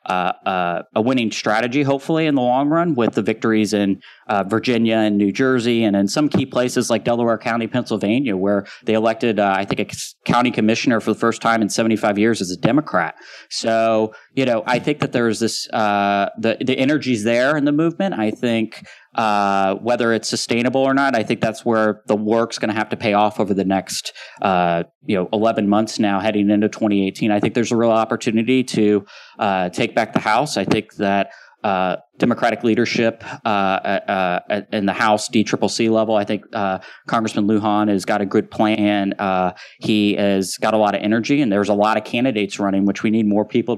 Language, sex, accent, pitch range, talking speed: English, male, American, 100-120 Hz, 205 wpm